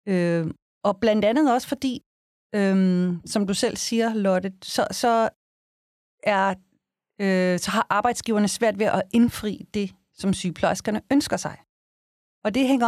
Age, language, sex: 30-49, Danish, female